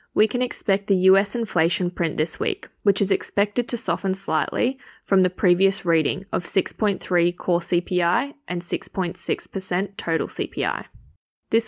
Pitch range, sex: 175-200 Hz, female